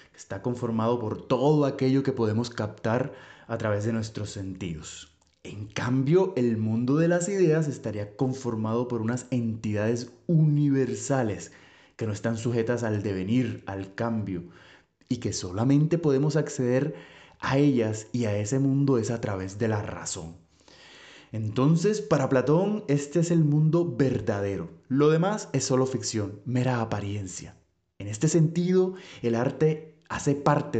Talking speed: 145 wpm